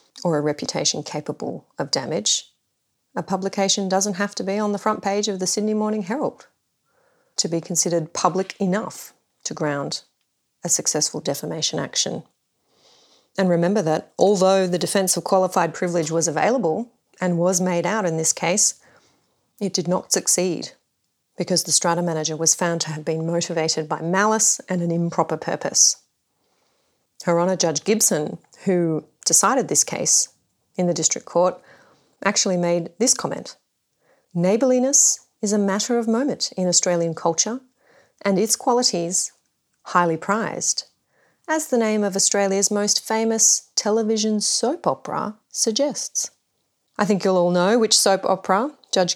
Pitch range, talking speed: 175-215 Hz, 145 wpm